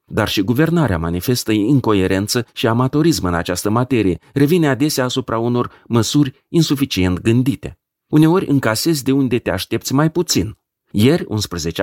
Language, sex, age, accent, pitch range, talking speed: Romanian, male, 40-59, native, 105-150 Hz, 135 wpm